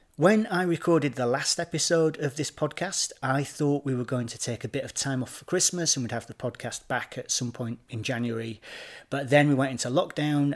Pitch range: 120-145 Hz